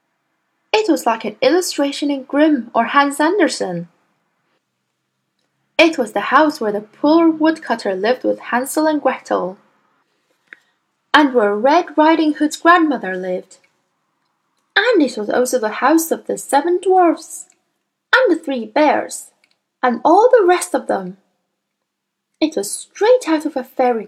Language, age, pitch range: Chinese, 10-29, 200-310 Hz